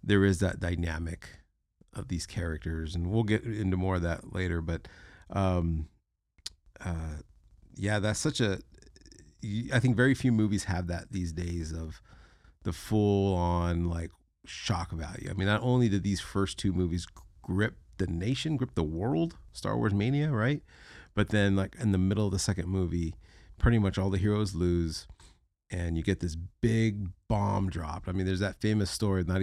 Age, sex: 30-49, male